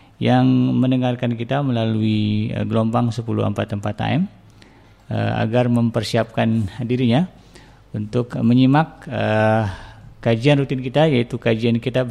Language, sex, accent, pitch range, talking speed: Indonesian, male, native, 110-140 Hz, 95 wpm